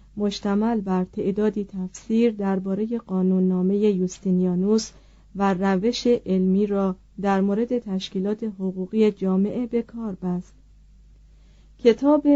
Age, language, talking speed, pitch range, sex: 40-59, Persian, 90 wpm, 190-230 Hz, female